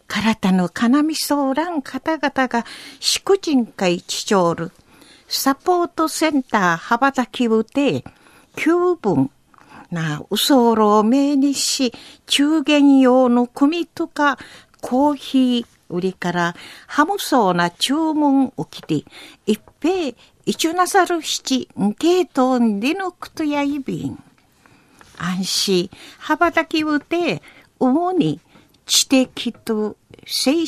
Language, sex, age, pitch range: Japanese, female, 50-69, 220-310 Hz